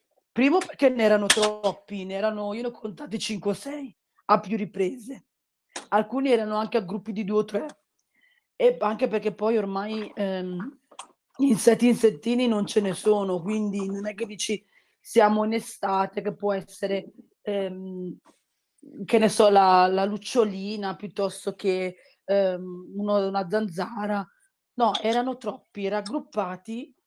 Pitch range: 195-230 Hz